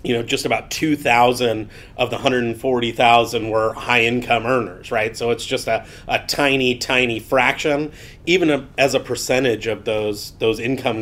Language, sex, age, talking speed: English, male, 30-49, 165 wpm